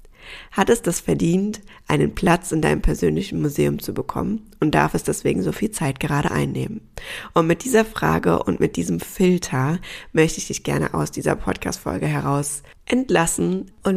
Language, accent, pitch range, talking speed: German, German, 145-170 Hz, 170 wpm